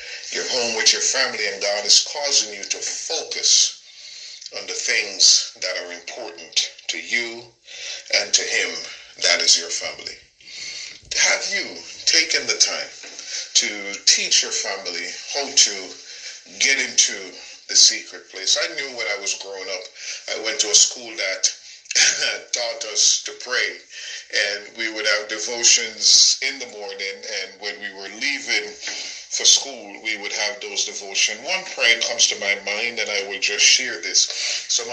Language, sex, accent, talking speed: English, male, American, 160 wpm